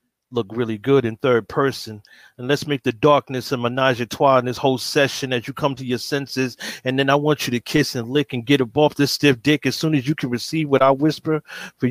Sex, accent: male, American